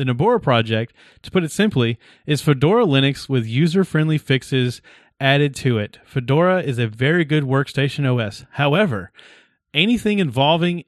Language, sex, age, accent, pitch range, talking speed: English, male, 30-49, American, 125-160 Hz, 145 wpm